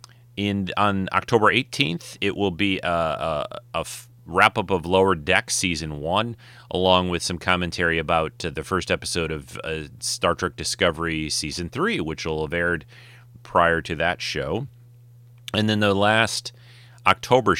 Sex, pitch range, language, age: male, 80-110 Hz, English, 30-49